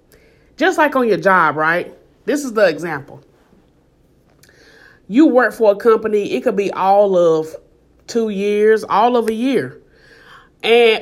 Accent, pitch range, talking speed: American, 200-280 Hz, 145 wpm